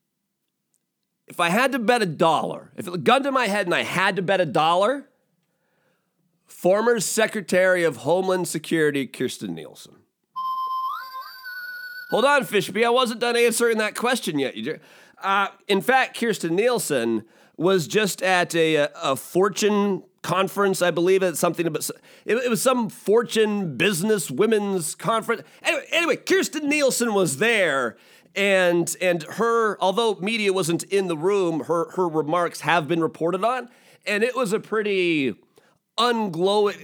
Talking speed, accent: 145 wpm, American